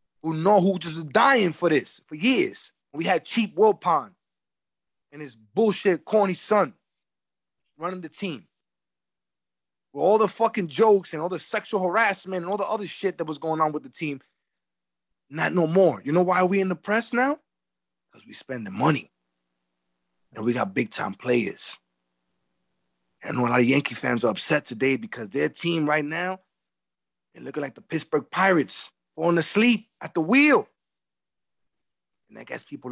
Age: 20-39